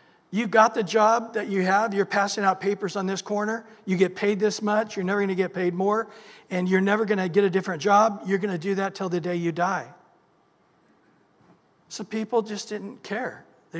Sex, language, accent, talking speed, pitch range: male, English, American, 220 wpm, 165-205 Hz